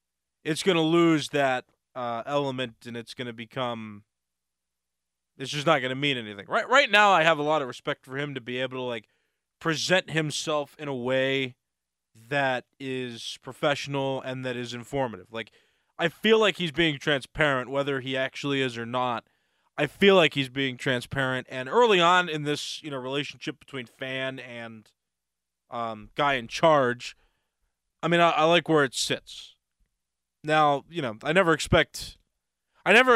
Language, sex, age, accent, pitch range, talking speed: English, male, 20-39, American, 115-150 Hz, 170 wpm